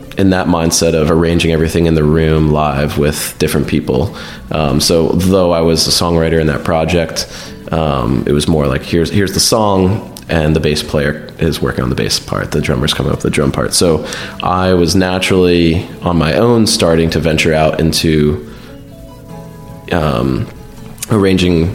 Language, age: English, 20-39